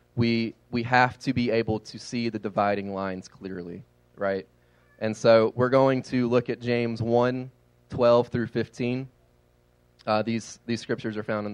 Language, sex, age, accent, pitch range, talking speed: English, male, 20-39, American, 90-120 Hz, 165 wpm